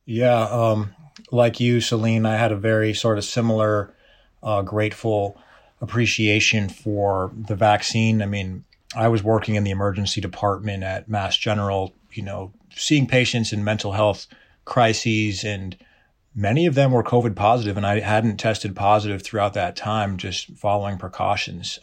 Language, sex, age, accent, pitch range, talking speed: English, male, 30-49, American, 100-110 Hz, 155 wpm